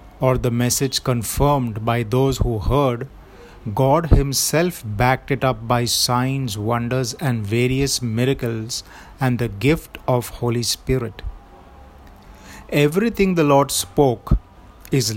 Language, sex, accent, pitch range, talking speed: Hindi, male, native, 110-135 Hz, 120 wpm